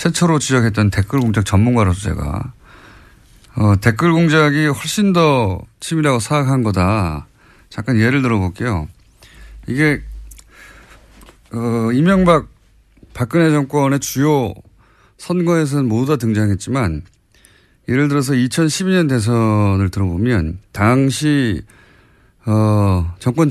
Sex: male